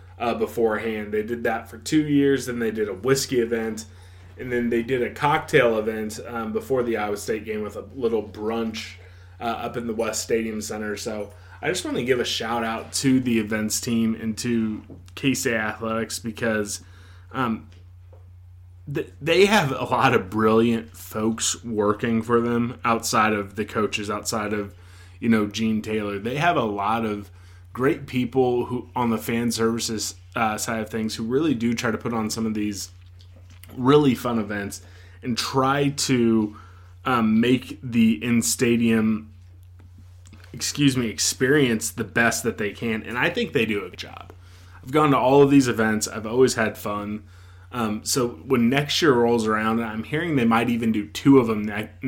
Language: English